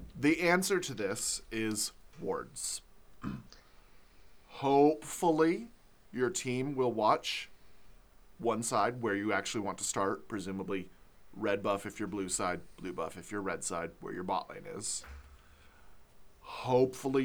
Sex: male